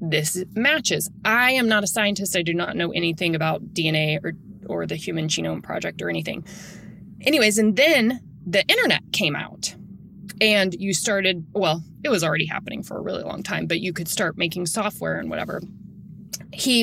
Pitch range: 170-225 Hz